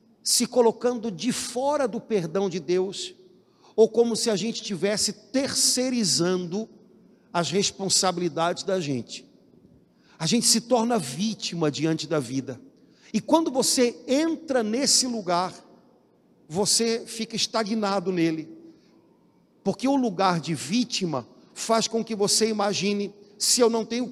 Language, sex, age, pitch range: Portuguese, male, 60-79, 180-240 Hz